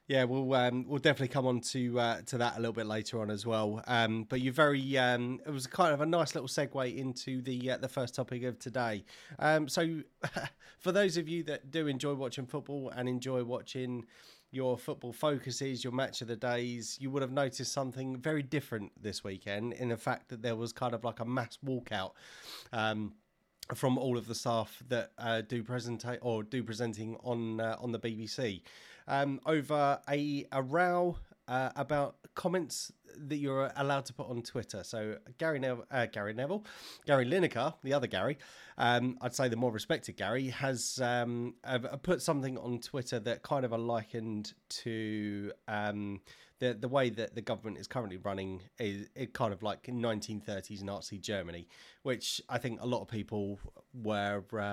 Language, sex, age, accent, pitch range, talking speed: English, male, 30-49, British, 115-135 Hz, 185 wpm